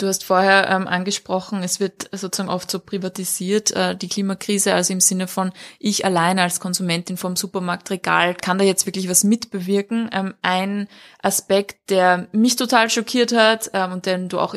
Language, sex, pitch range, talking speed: German, female, 185-215 Hz, 175 wpm